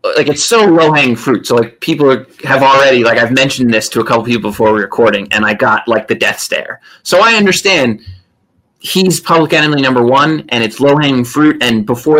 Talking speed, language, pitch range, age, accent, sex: 210 wpm, English, 120-155 Hz, 30-49, American, male